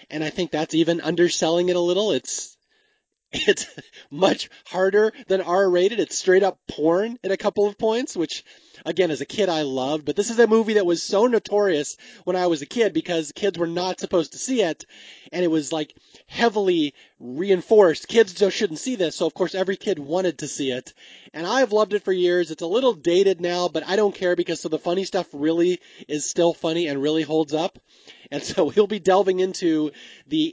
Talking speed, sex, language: 210 wpm, male, English